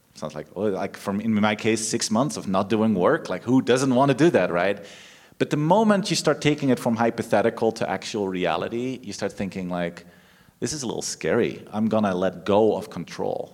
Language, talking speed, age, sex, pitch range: English, 220 wpm, 30-49, male, 100-130 Hz